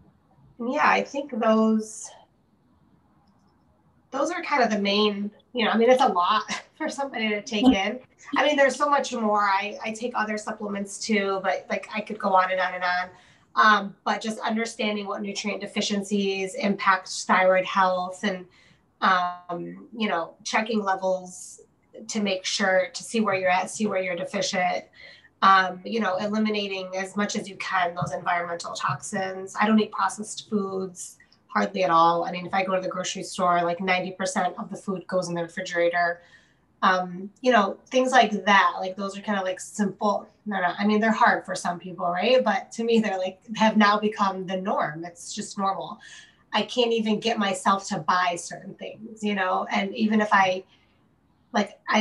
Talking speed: 185 wpm